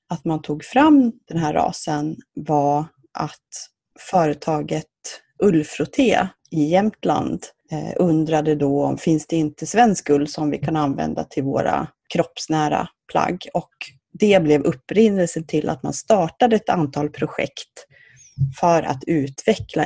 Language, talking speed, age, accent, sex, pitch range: Swedish, 135 wpm, 30-49, native, female, 150-195 Hz